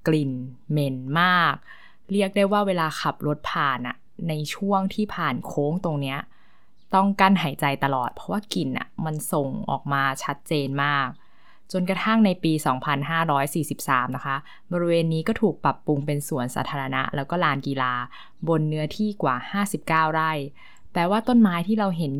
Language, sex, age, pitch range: Thai, female, 20-39, 140-190 Hz